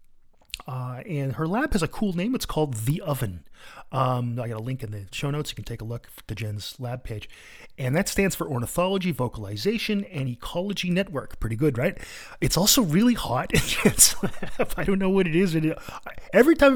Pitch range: 130-220 Hz